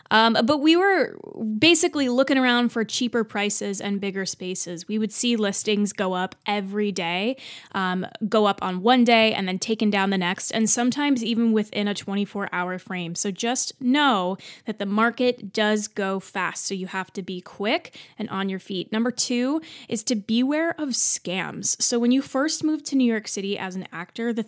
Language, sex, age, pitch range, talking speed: English, female, 20-39, 195-245 Hz, 195 wpm